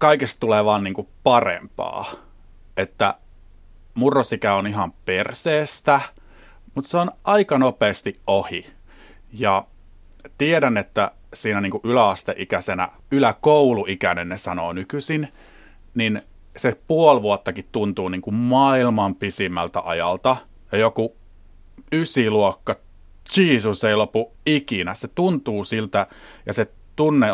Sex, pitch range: male, 95-135 Hz